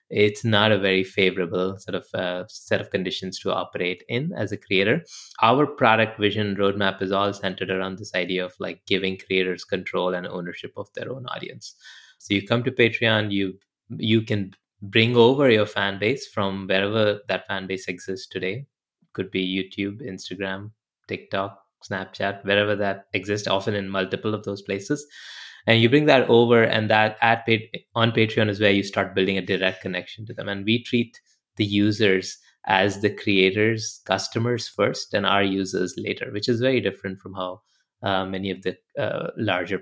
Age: 20-39